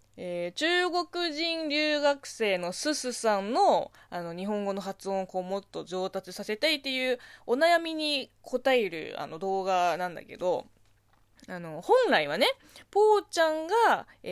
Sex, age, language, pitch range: female, 20-39, Japanese, 185-290 Hz